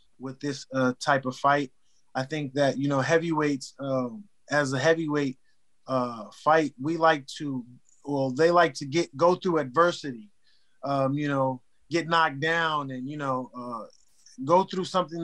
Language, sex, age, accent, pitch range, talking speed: English, male, 20-39, American, 140-175 Hz, 165 wpm